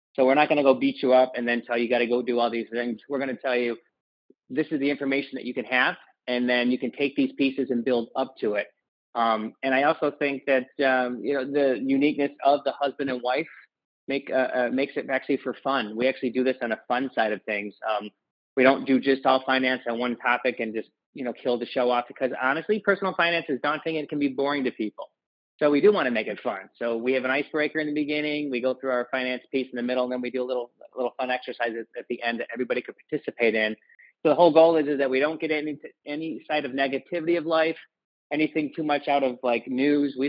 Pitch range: 125-145 Hz